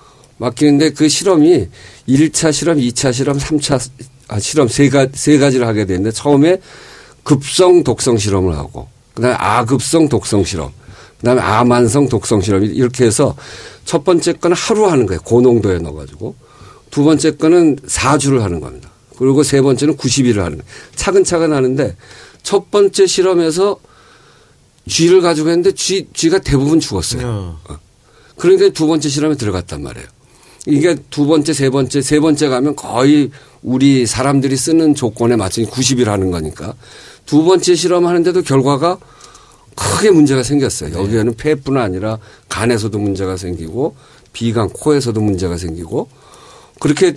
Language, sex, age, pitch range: Korean, male, 50-69, 110-155 Hz